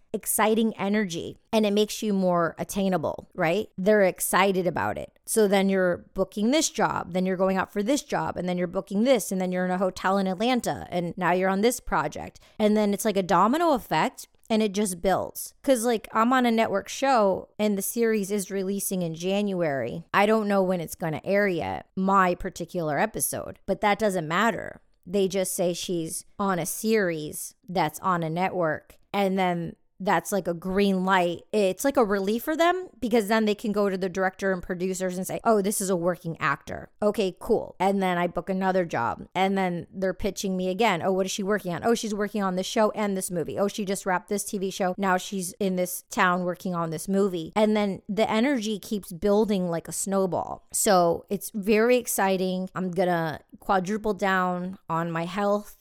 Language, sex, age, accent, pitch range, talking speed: English, female, 30-49, American, 180-210 Hz, 210 wpm